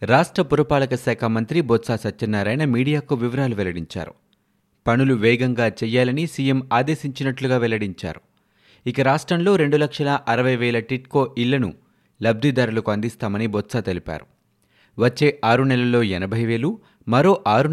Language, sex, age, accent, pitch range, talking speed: Telugu, male, 30-49, native, 110-140 Hz, 110 wpm